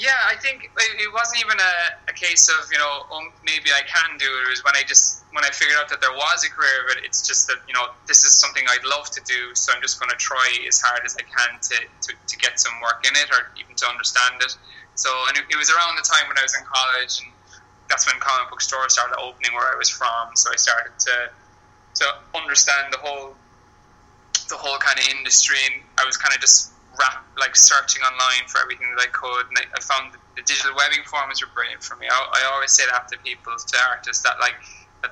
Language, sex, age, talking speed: English, male, 20-39, 250 wpm